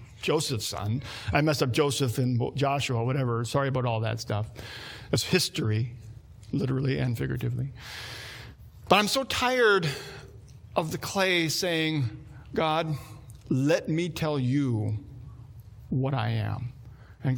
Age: 50-69